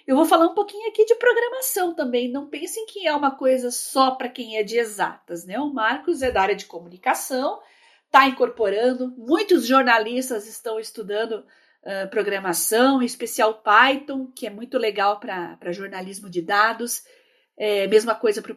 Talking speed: 170 wpm